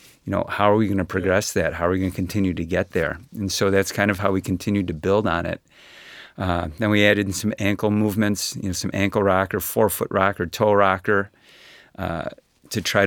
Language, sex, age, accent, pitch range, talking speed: English, male, 30-49, American, 95-105 Hz, 230 wpm